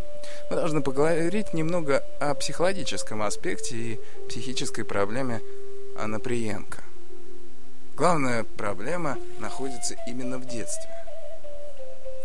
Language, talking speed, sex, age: Russian, 90 wpm, male, 20-39